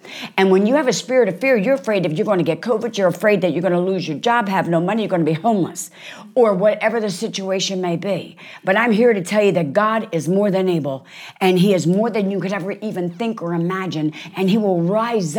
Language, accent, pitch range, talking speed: English, American, 165-200 Hz, 260 wpm